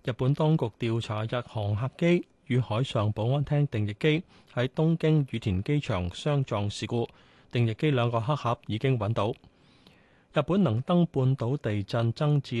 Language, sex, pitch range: Chinese, male, 110-145 Hz